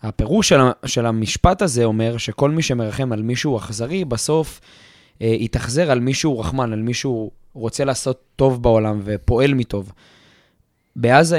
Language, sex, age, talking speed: Hebrew, male, 20-39, 140 wpm